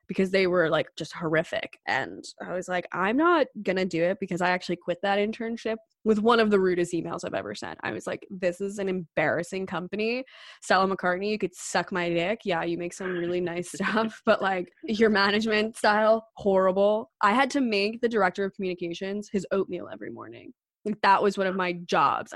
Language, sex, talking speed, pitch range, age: English, female, 205 wpm, 185-235 Hz, 20-39